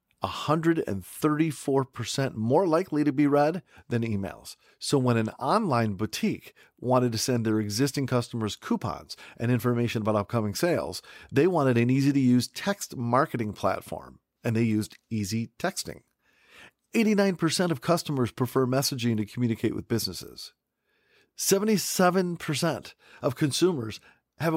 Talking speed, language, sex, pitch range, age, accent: 120 wpm, English, male, 115-155 Hz, 40-59, American